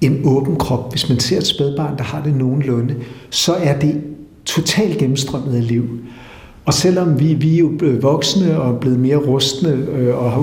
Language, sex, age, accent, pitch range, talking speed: Danish, male, 60-79, native, 120-150 Hz, 190 wpm